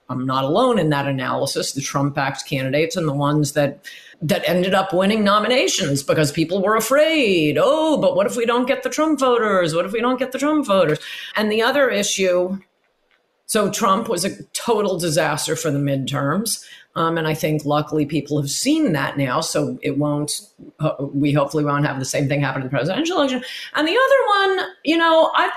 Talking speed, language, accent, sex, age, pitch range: 200 wpm, English, American, female, 40-59, 145-210 Hz